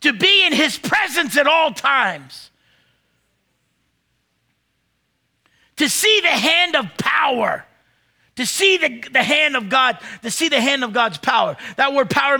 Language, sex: English, male